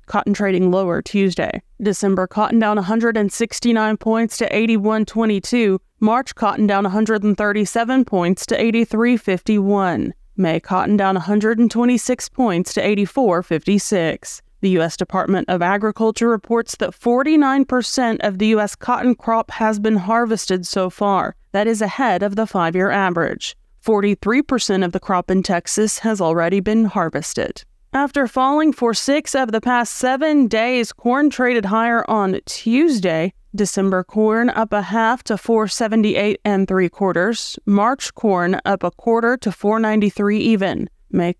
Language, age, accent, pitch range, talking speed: English, 30-49, American, 190-230 Hz, 145 wpm